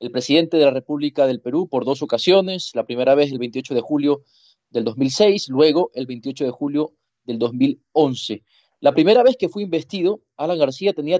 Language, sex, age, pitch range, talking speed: Spanish, male, 30-49, 130-180 Hz, 190 wpm